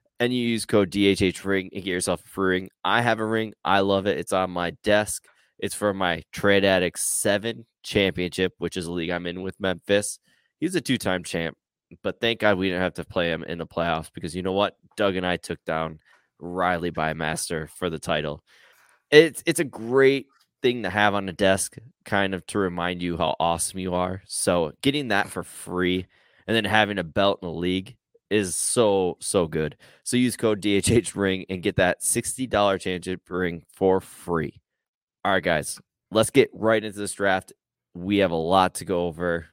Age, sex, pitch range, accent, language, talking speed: 20-39, male, 90-105 Hz, American, English, 205 wpm